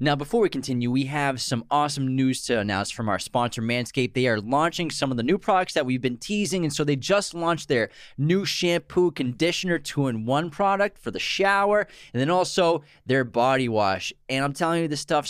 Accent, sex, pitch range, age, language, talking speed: American, male, 125-160 Hz, 20-39, English, 210 wpm